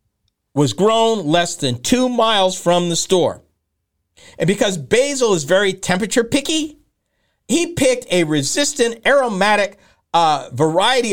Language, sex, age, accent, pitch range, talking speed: English, male, 50-69, American, 165-235 Hz, 125 wpm